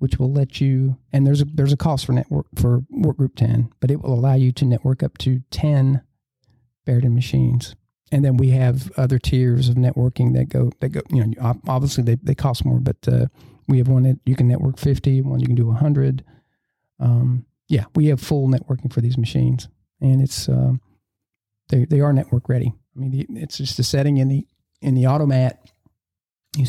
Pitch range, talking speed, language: 120-135 Hz, 210 wpm, English